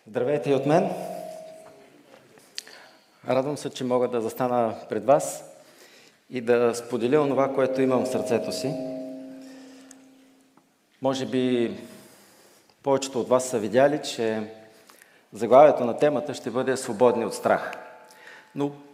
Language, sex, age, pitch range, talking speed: Bulgarian, male, 40-59, 125-155 Hz, 120 wpm